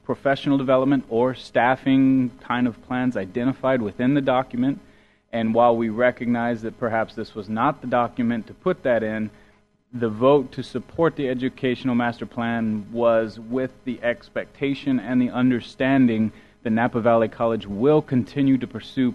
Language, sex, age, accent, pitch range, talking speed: English, male, 30-49, American, 110-130 Hz, 155 wpm